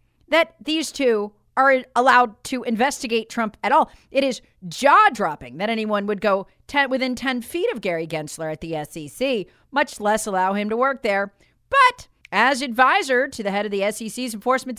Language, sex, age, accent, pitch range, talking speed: English, female, 40-59, American, 200-280 Hz, 175 wpm